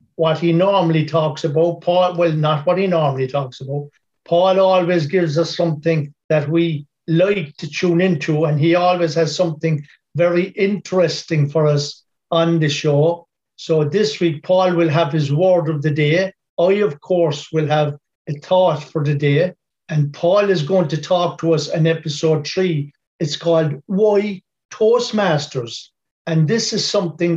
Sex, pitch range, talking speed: male, 155-185 Hz, 165 wpm